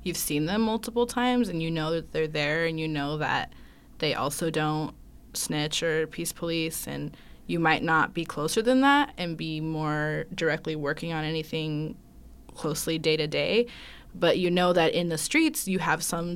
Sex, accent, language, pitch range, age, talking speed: female, American, English, 155-190 Hz, 20-39, 185 wpm